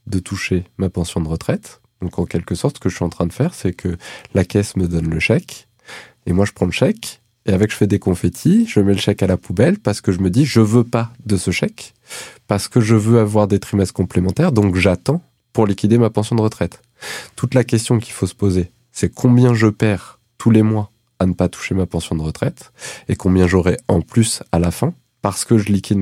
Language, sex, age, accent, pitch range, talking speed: French, male, 20-39, French, 90-115 Hz, 245 wpm